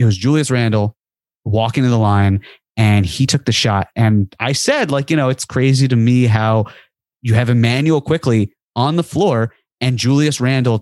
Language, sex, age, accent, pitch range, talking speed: English, male, 30-49, American, 110-130 Hz, 190 wpm